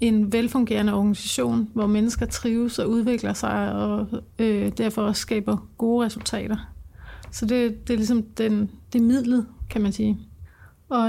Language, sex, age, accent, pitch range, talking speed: Danish, female, 30-49, native, 205-235 Hz, 155 wpm